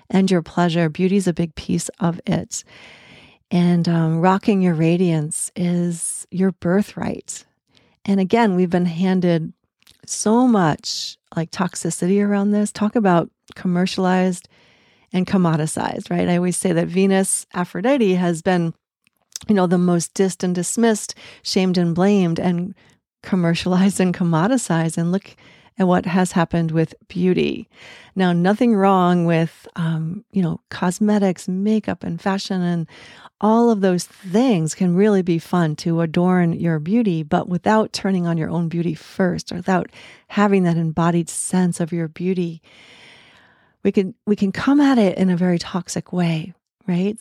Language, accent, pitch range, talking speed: English, American, 170-200 Hz, 150 wpm